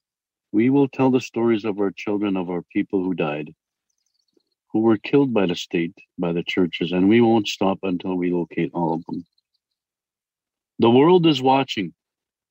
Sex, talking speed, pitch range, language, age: male, 175 wpm, 90-125 Hz, English, 50-69